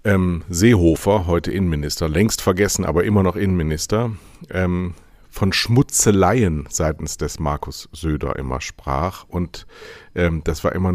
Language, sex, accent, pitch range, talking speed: German, male, German, 80-100 Hz, 115 wpm